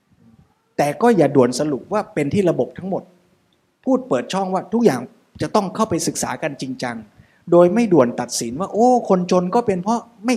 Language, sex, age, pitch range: Thai, male, 20-39, 140-200 Hz